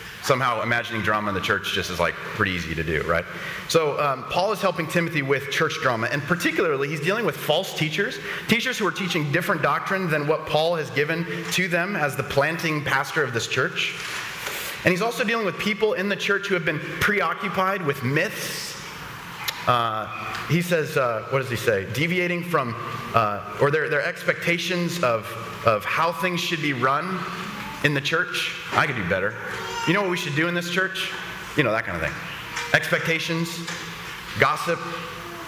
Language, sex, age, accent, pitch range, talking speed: English, male, 30-49, American, 125-170 Hz, 190 wpm